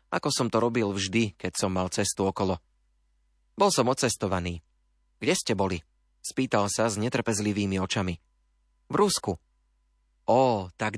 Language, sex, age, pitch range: Slovak, male, 30-49, 80-120 Hz